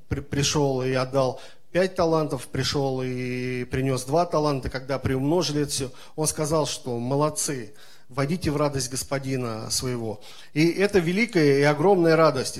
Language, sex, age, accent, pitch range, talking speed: Russian, male, 40-59, native, 135-170 Hz, 135 wpm